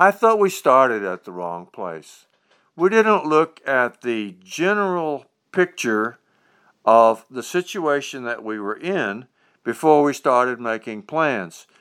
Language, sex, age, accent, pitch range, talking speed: English, male, 50-69, American, 120-165 Hz, 135 wpm